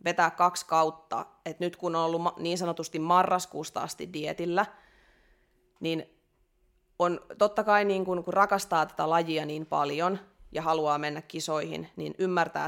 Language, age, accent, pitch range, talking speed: Finnish, 30-49, native, 160-185 Hz, 145 wpm